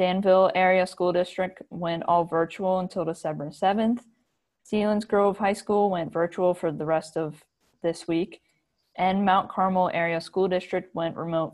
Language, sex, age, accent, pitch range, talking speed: English, female, 20-39, American, 160-190 Hz, 155 wpm